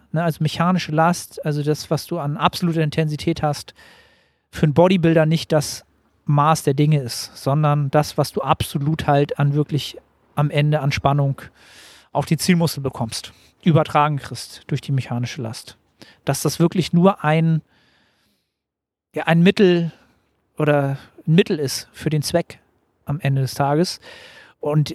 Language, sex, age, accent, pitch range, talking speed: German, male, 40-59, German, 145-175 Hz, 145 wpm